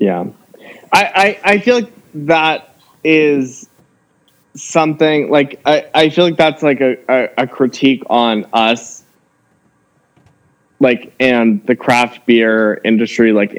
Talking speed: 130 wpm